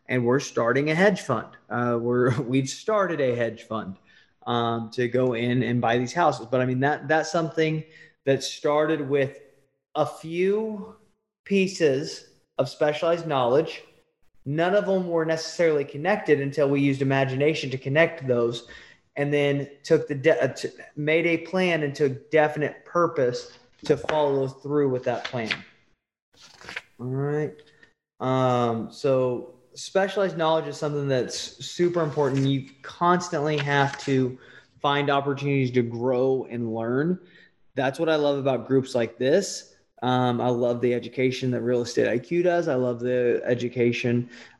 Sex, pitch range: male, 125-160 Hz